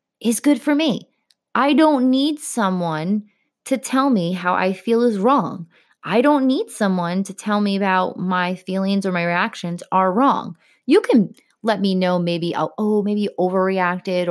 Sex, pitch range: female, 175-235 Hz